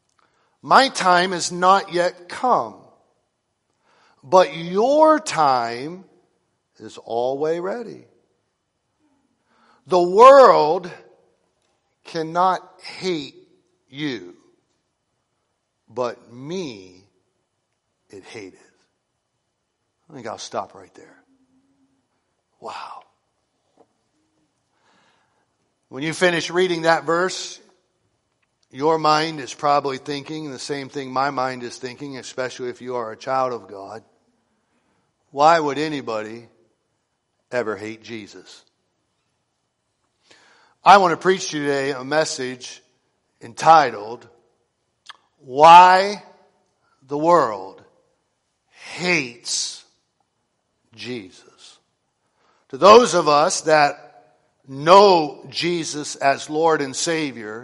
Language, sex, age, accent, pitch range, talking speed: English, male, 60-79, American, 135-185 Hz, 90 wpm